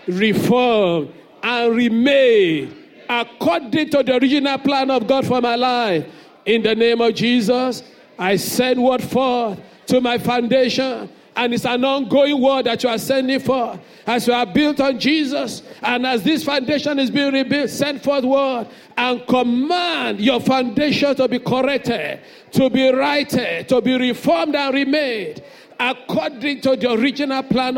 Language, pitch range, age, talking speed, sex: English, 230-270 Hz, 50-69, 155 wpm, male